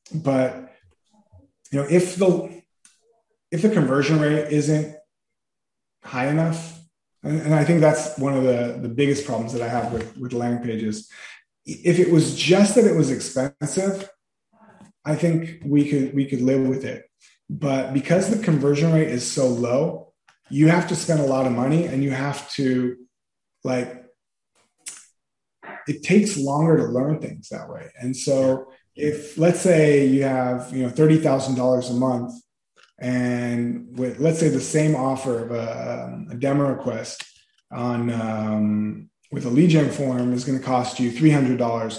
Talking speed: 165 wpm